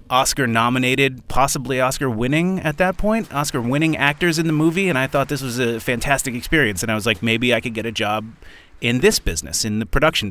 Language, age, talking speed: English, 30-49, 205 wpm